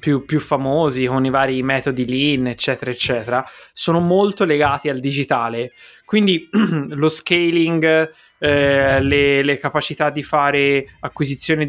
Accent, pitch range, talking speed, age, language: native, 135-155 Hz, 130 wpm, 20-39, Italian